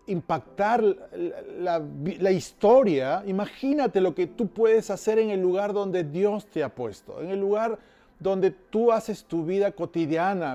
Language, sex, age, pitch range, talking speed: Spanish, male, 40-59, 170-220 Hz, 160 wpm